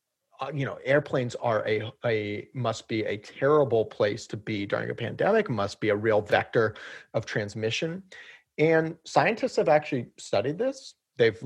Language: English